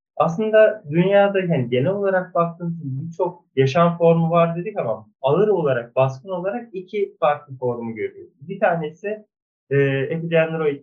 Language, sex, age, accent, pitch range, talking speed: Turkish, male, 30-49, native, 125-180 Hz, 135 wpm